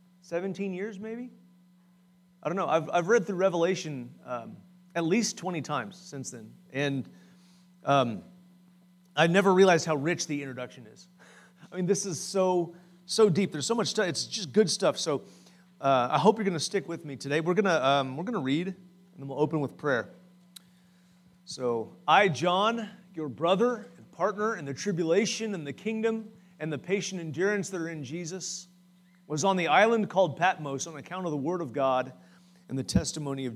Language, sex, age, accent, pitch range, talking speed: English, male, 30-49, American, 135-180 Hz, 185 wpm